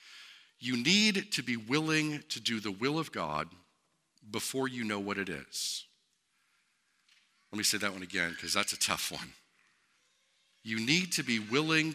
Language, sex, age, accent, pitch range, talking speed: English, male, 50-69, American, 100-145 Hz, 165 wpm